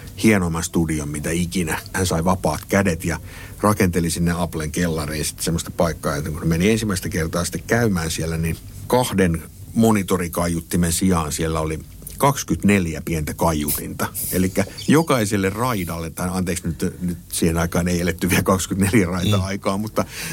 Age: 60-79